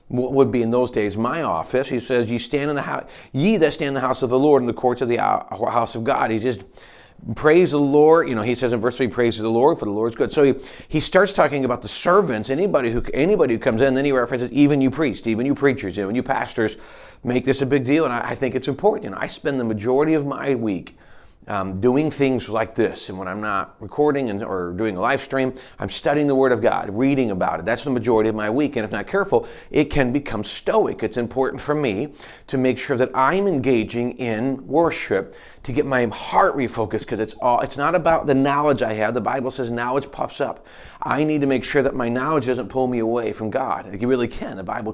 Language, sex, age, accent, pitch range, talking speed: English, male, 40-59, American, 115-140 Hz, 250 wpm